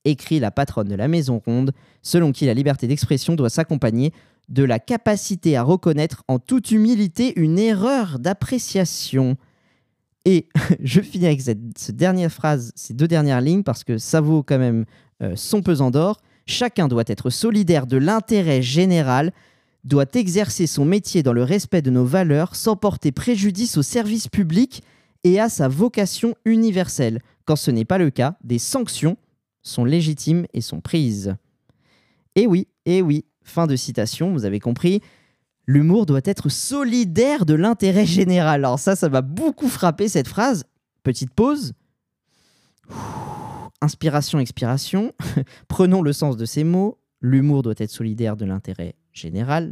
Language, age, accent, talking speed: French, 20-39, French, 160 wpm